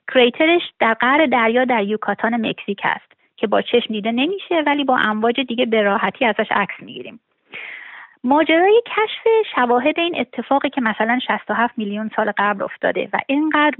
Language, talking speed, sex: Persian, 150 wpm, female